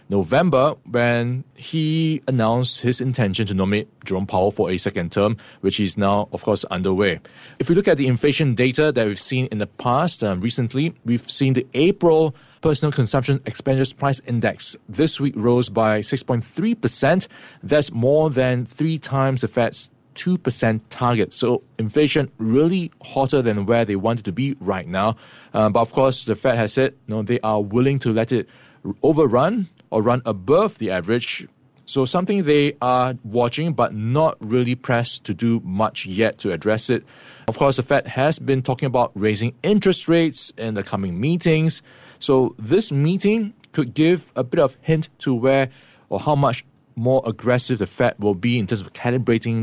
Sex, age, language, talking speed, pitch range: male, 20-39, English, 175 wpm, 110-140 Hz